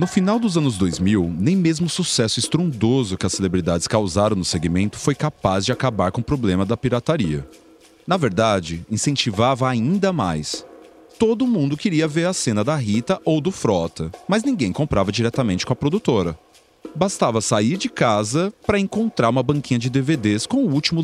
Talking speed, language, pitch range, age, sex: 175 wpm, Portuguese, 100-165 Hz, 30-49, male